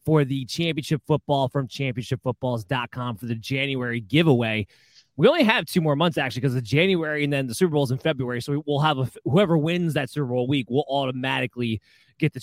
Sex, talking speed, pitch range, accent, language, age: male, 205 wpm, 125-165 Hz, American, English, 20-39